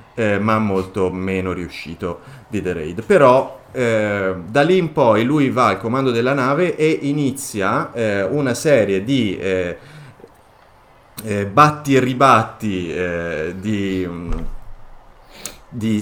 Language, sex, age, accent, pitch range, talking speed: Italian, male, 30-49, native, 95-120 Hz, 125 wpm